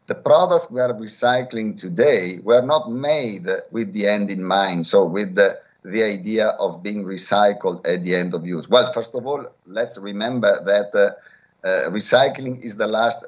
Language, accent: English, Italian